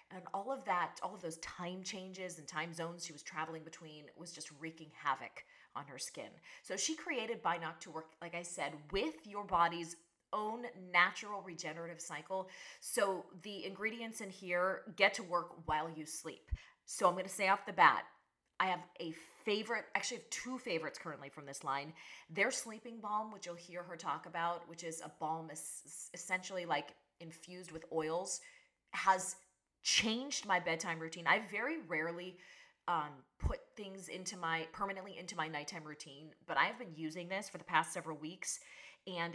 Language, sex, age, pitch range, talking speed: English, female, 30-49, 160-190 Hz, 185 wpm